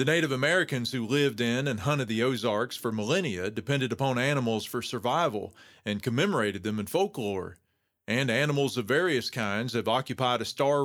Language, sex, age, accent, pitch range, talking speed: English, male, 40-59, American, 115-155 Hz, 170 wpm